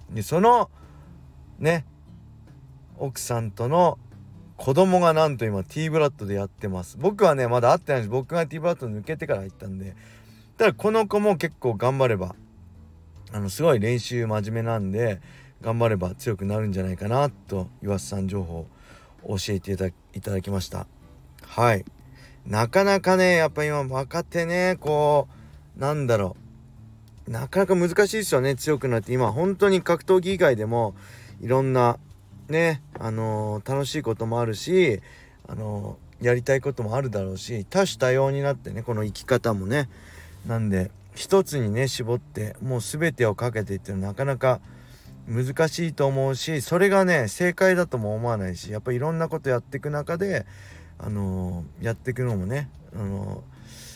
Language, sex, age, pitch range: Japanese, male, 40-59, 100-145 Hz